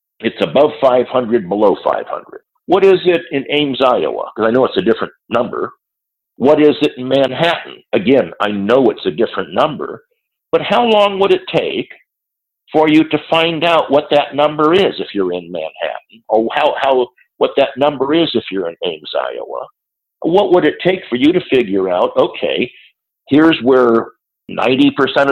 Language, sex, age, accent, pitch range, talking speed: English, male, 50-69, American, 125-190 Hz, 175 wpm